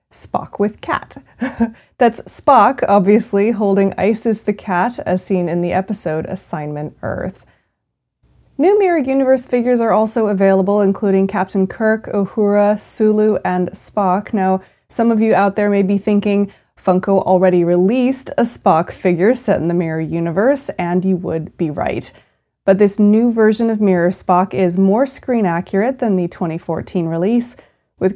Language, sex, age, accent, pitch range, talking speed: English, female, 20-39, American, 190-235 Hz, 155 wpm